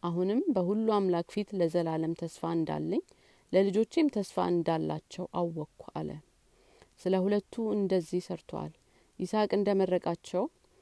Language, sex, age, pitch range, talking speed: Amharic, female, 40-59, 160-195 Hz, 90 wpm